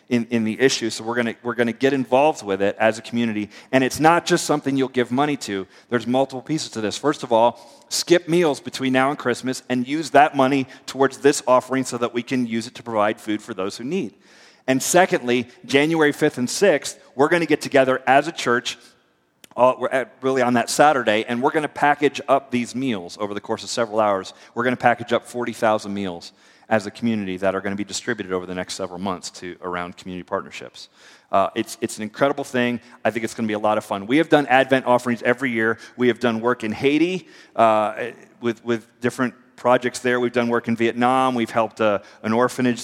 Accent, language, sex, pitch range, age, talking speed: American, English, male, 110-130 Hz, 40-59, 235 wpm